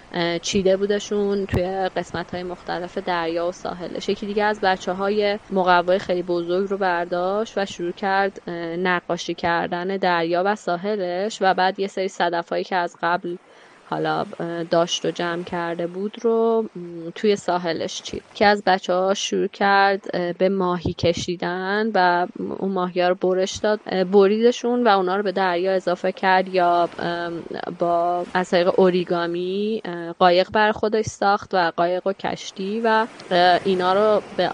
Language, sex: Persian, female